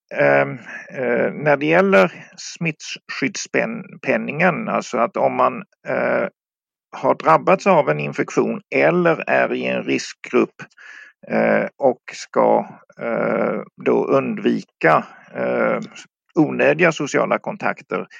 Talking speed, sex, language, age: 80 wpm, male, English, 50-69